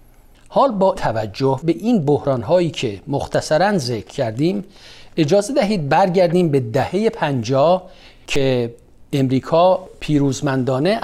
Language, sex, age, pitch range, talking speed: Persian, male, 50-69, 125-170 Hz, 110 wpm